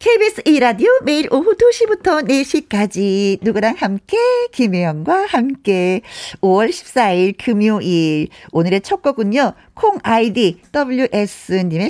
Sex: female